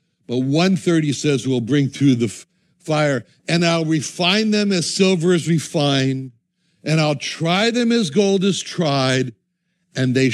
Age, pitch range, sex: 60-79, 140-185 Hz, male